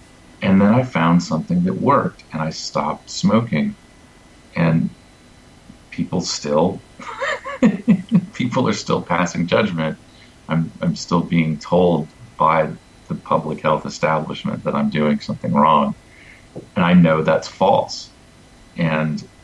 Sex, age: male, 40-59